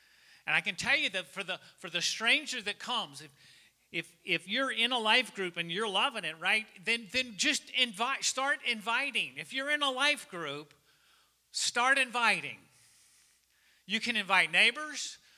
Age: 40-59